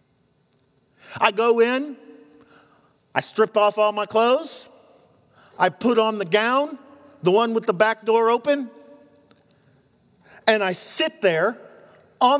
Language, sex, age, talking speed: English, male, 40-59, 125 wpm